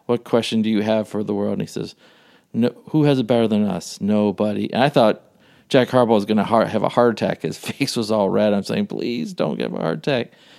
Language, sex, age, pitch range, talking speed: English, male, 50-69, 105-125 Hz, 250 wpm